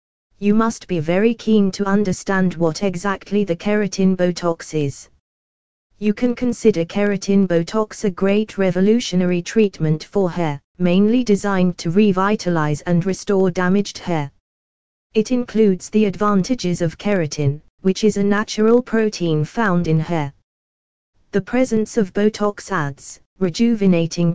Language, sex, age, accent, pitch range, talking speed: English, female, 20-39, British, 165-210 Hz, 130 wpm